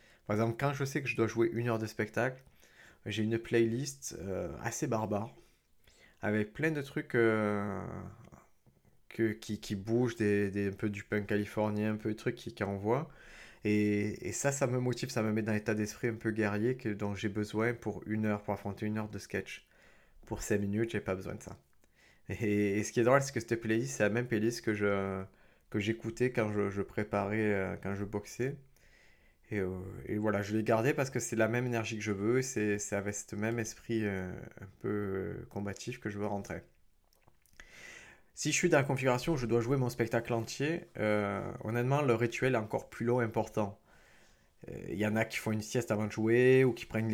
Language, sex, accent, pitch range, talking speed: French, male, French, 105-120 Hz, 220 wpm